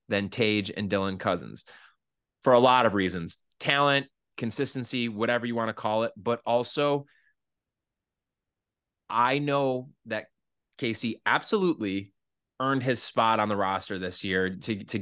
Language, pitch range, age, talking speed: English, 105-140 Hz, 20-39, 140 wpm